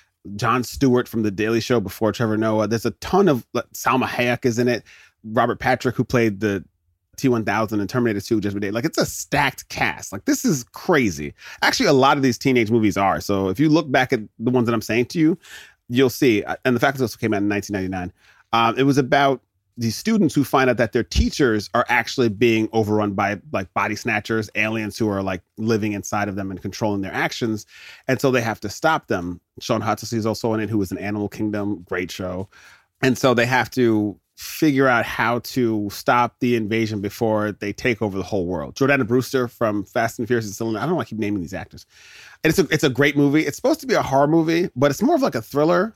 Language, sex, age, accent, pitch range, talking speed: English, male, 30-49, American, 105-130 Hz, 230 wpm